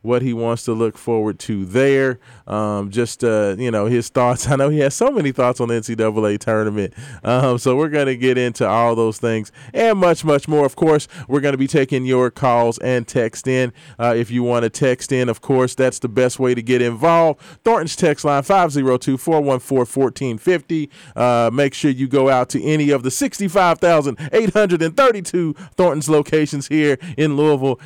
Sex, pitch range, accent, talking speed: male, 125-150 Hz, American, 190 wpm